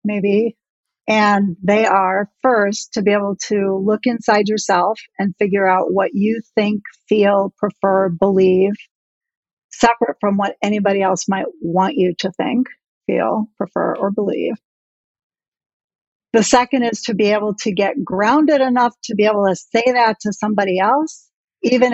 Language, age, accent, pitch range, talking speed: English, 50-69, American, 195-230 Hz, 150 wpm